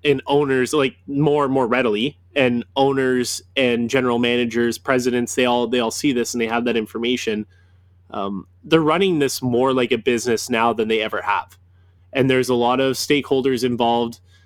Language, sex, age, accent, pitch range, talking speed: English, male, 20-39, American, 110-135 Hz, 185 wpm